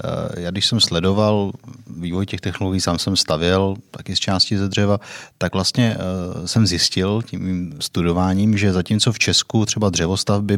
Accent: native